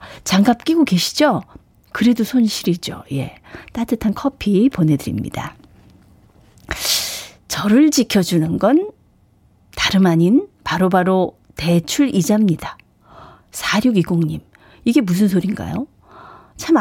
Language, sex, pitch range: Korean, female, 175-265 Hz